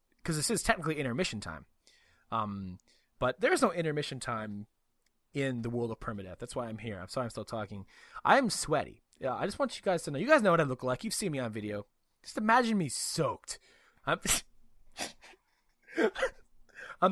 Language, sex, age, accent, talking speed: English, male, 20-39, American, 195 wpm